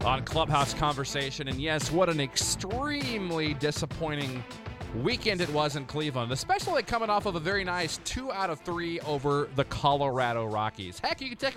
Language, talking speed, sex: English, 170 wpm, male